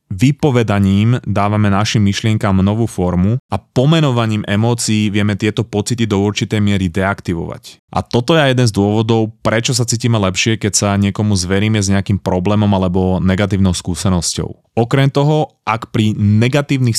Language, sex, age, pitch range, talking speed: Slovak, male, 20-39, 100-120 Hz, 145 wpm